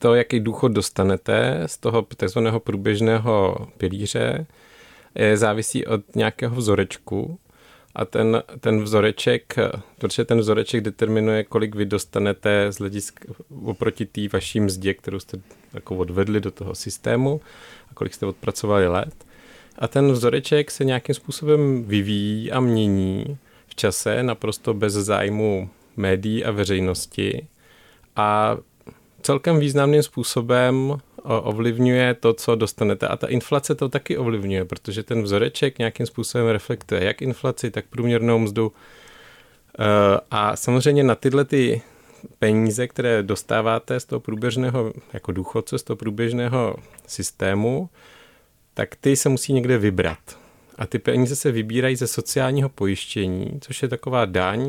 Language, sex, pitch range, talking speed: Czech, male, 105-125 Hz, 130 wpm